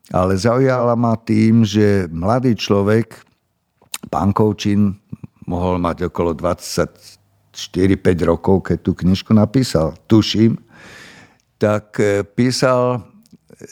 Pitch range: 95-110 Hz